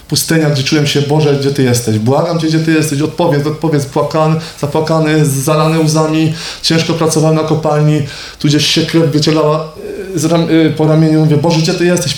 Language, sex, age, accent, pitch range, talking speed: Polish, male, 20-39, native, 125-160 Hz, 180 wpm